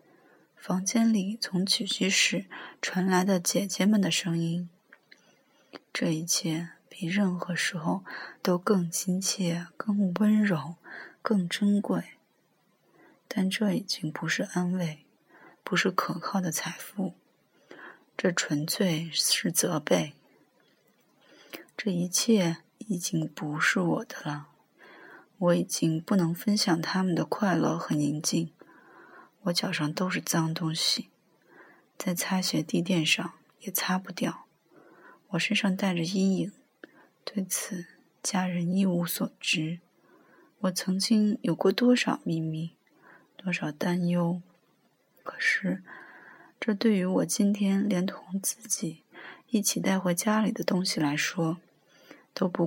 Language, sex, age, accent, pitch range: Chinese, female, 20-39, native, 170-205 Hz